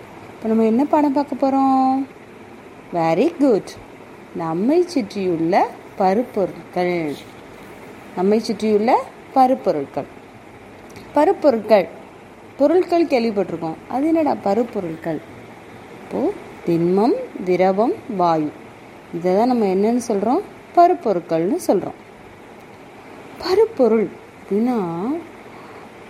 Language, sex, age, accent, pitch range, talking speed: Tamil, female, 30-49, native, 190-285 Hz, 75 wpm